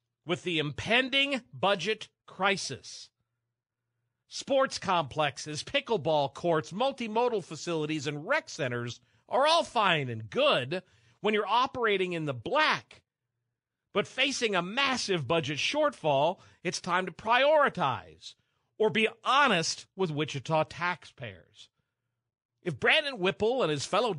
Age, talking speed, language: 50-69, 115 wpm, English